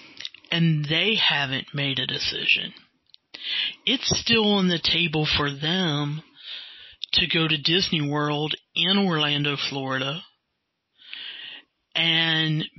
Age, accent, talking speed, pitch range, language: 50-69, American, 105 wpm, 145-175 Hz, English